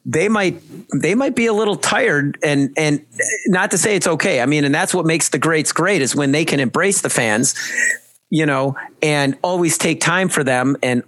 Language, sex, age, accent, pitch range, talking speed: English, male, 40-59, American, 140-180 Hz, 215 wpm